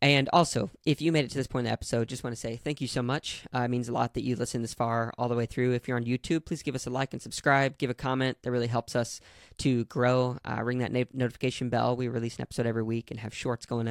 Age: 10-29